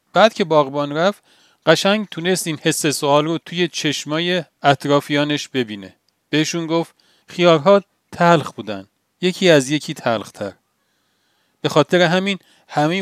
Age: 40-59